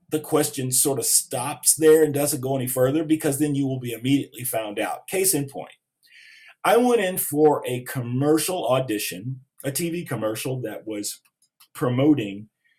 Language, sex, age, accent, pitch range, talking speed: English, male, 40-59, American, 115-160 Hz, 165 wpm